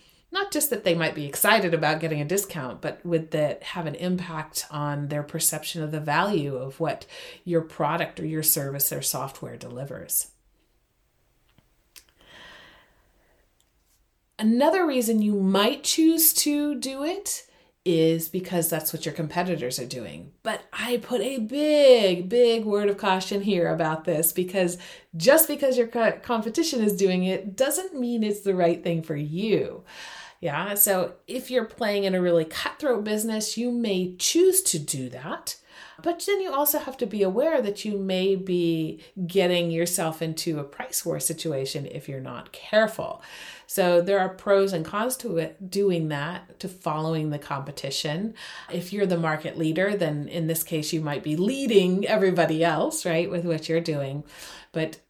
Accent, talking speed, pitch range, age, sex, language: American, 165 wpm, 160-215 Hz, 30-49, female, English